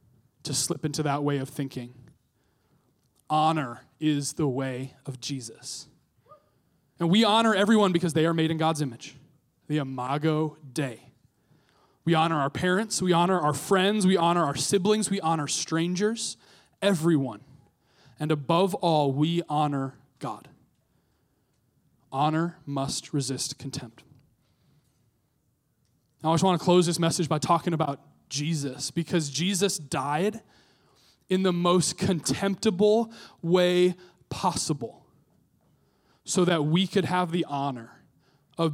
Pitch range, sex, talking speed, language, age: 140-185 Hz, male, 125 wpm, English, 20-39